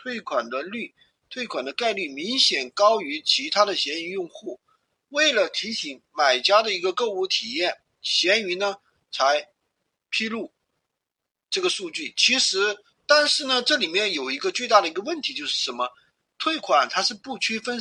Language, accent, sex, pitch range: Chinese, native, male, 220-330 Hz